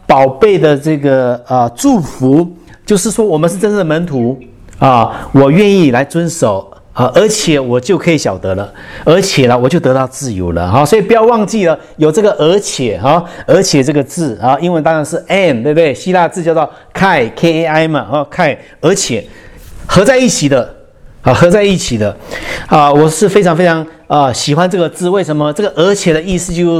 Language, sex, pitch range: English, male, 130-190 Hz